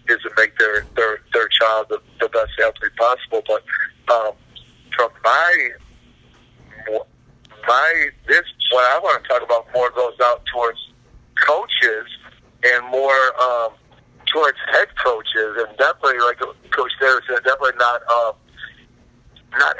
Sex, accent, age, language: male, American, 50-69, English